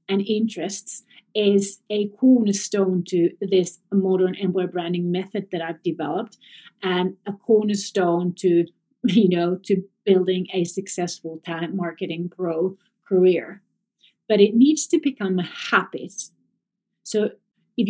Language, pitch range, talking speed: English, 180-220 Hz, 125 wpm